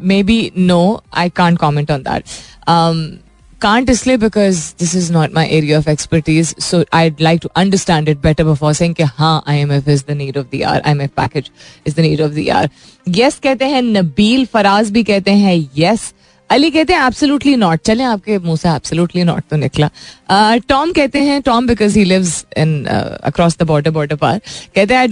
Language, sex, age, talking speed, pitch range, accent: Hindi, female, 20-39, 145 wpm, 155-205 Hz, native